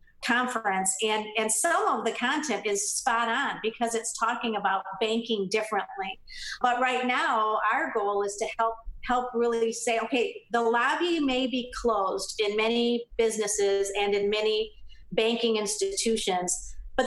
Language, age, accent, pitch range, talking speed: English, 50-69, American, 210-245 Hz, 150 wpm